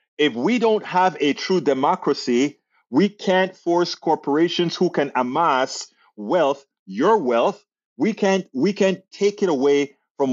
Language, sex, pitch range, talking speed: English, male, 150-210 Hz, 145 wpm